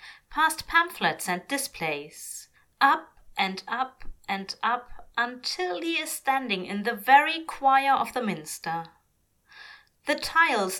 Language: English